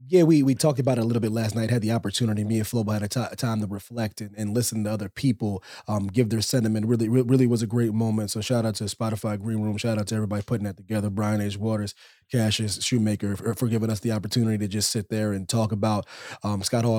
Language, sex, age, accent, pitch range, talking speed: English, male, 30-49, American, 110-130 Hz, 265 wpm